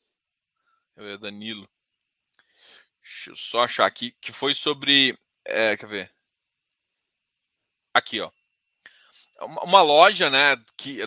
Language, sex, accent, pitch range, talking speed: Portuguese, male, Brazilian, 185-275 Hz, 100 wpm